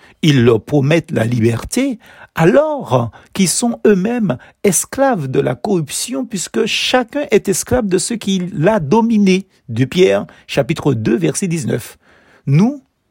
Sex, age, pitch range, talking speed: male, 60-79, 135-215 Hz, 135 wpm